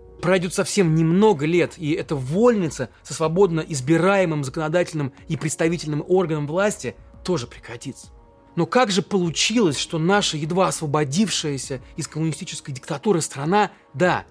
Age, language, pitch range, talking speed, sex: 20-39, Russian, 140-185 Hz, 125 wpm, male